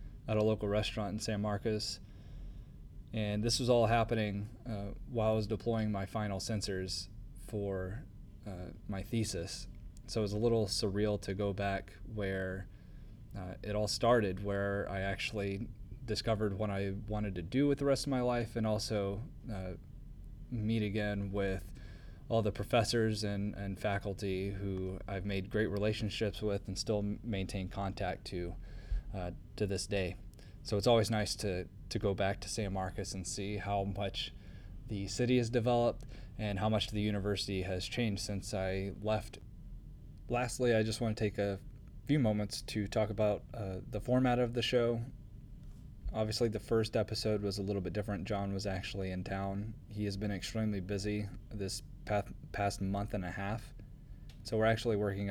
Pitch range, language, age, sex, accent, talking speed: 100-110 Hz, English, 20-39, male, American, 170 wpm